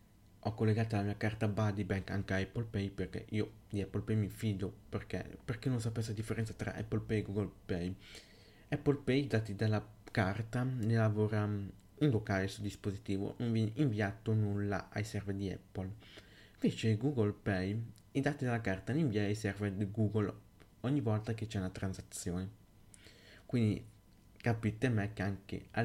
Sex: male